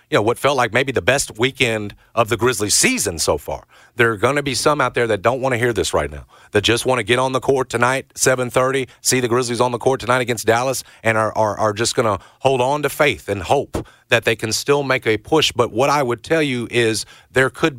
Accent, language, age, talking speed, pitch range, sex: American, English, 40-59, 265 wpm, 115-135 Hz, male